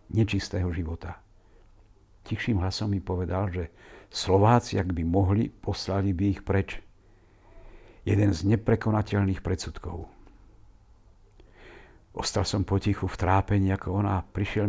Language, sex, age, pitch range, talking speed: Slovak, male, 60-79, 95-105 Hz, 115 wpm